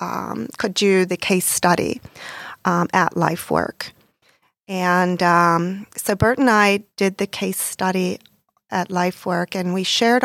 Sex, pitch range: female, 180-215 Hz